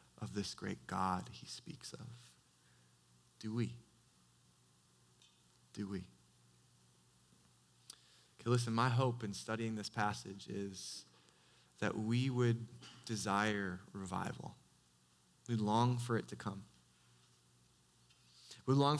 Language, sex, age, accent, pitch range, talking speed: English, male, 20-39, American, 95-140 Hz, 105 wpm